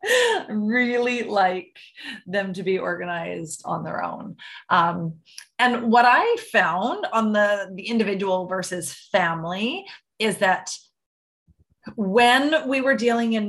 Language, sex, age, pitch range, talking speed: English, female, 30-49, 180-230 Hz, 125 wpm